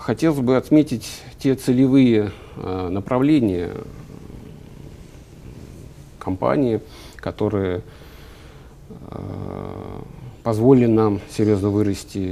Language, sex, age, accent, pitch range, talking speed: Russian, male, 50-69, native, 95-115 Hz, 70 wpm